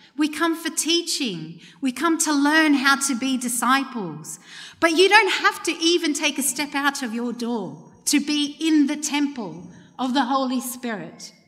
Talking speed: 180 wpm